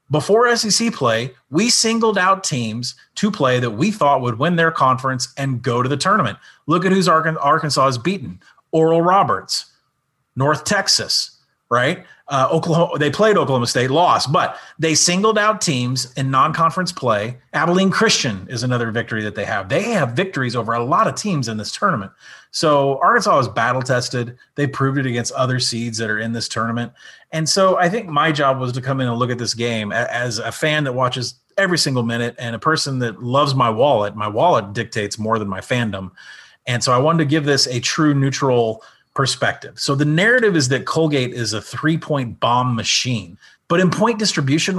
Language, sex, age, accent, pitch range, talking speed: English, male, 30-49, American, 120-160 Hz, 195 wpm